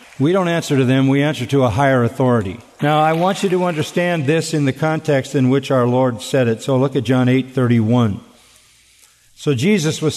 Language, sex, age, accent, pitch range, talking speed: English, male, 50-69, American, 125-170 Hz, 220 wpm